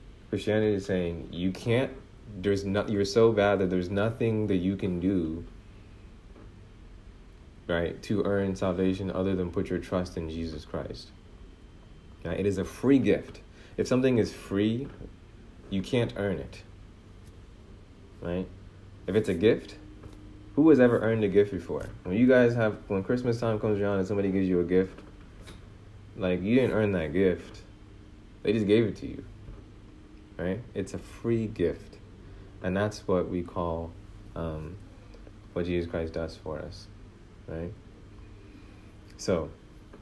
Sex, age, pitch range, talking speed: male, 30-49, 90-105 Hz, 150 wpm